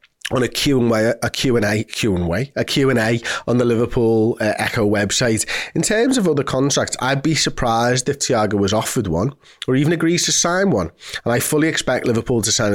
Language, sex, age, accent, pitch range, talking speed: English, male, 30-49, British, 105-130 Hz, 175 wpm